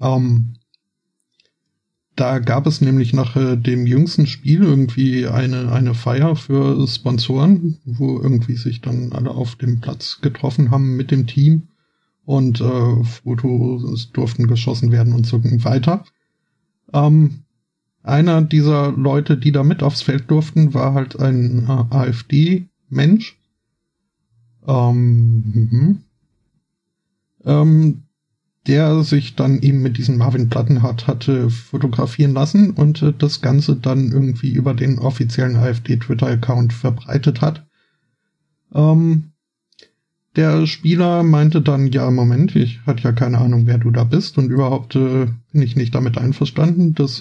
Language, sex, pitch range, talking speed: German, male, 125-150 Hz, 135 wpm